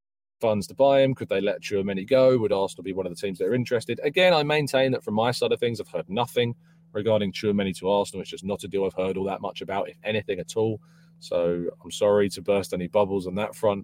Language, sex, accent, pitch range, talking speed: English, male, British, 95-125 Hz, 270 wpm